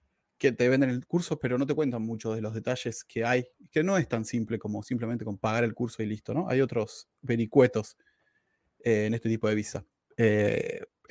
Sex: male